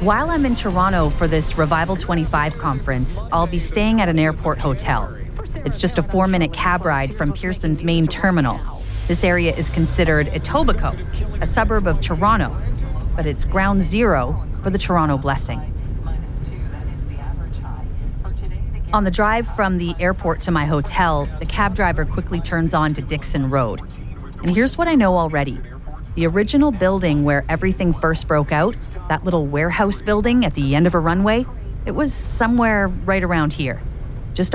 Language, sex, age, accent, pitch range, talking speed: English, female, 40-59, American, 145-200 Hz, 160 wpm